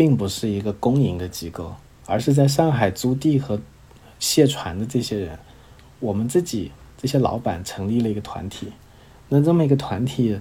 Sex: male